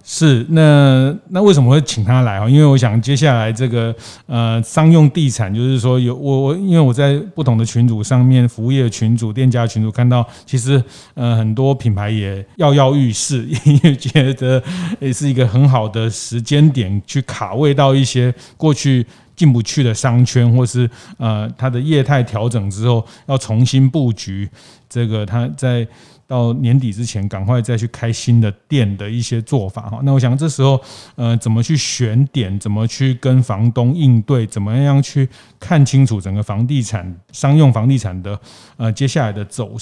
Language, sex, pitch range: Chinese, male, 115-135 Hz